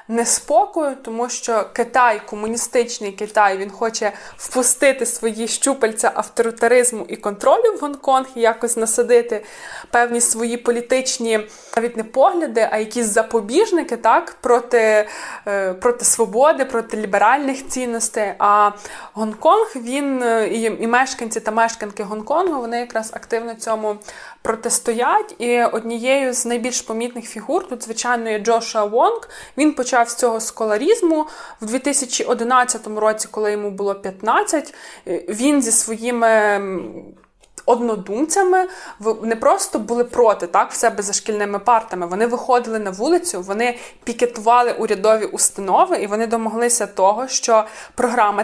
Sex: female